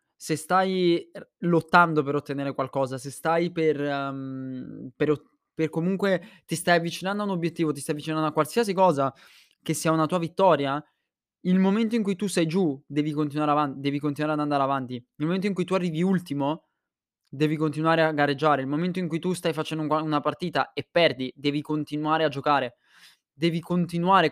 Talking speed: 185 wpm